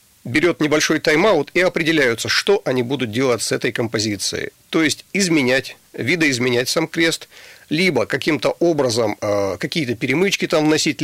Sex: male